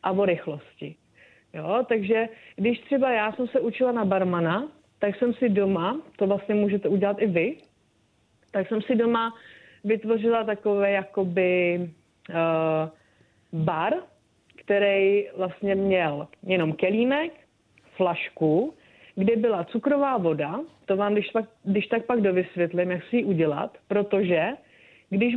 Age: 30-49